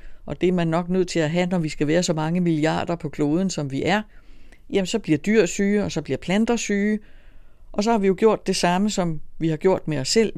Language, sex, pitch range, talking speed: Danish, female, 155-185 Hz, 265 wpm